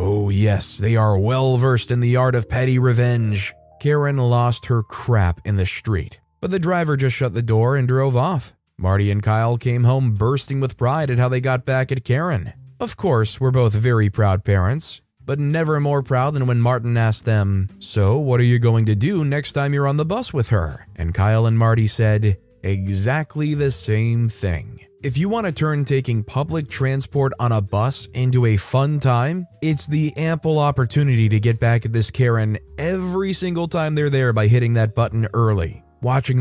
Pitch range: 110-140 Hz